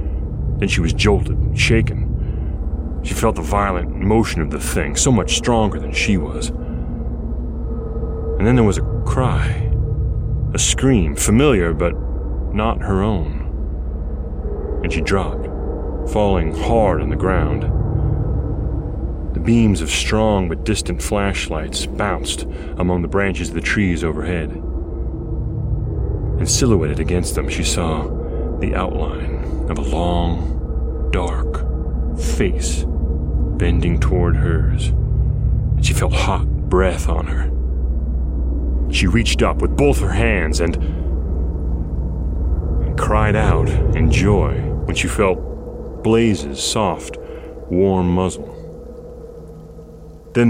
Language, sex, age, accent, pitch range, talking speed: English, male, 30-49, American, 75-100 Hz, 120 wpm